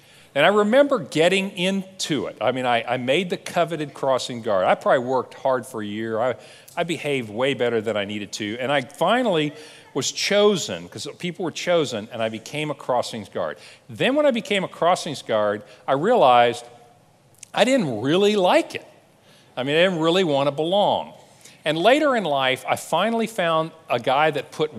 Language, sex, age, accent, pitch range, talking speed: English, male, 50-69, American, 125-190 Hz, 190 wpm